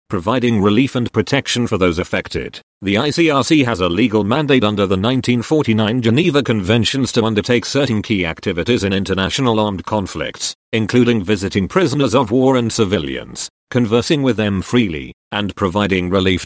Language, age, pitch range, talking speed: English, 40-59, 100-120 Hz, 150 wpm